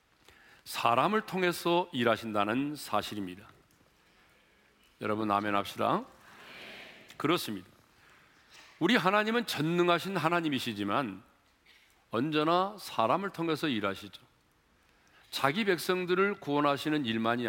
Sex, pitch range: male, 125-190 Hz